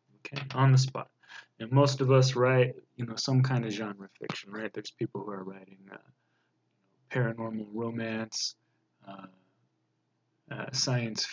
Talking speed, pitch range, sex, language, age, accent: 150 wpm, 115-140 Hz, male, English, 20-39, American